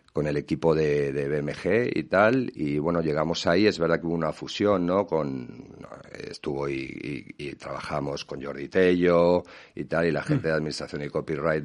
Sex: male